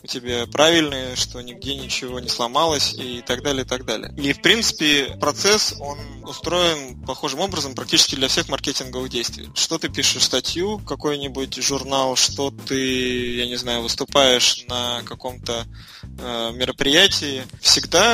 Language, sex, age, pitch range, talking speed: Russian, male, 20-39, 125-150 Hz, 145 wpm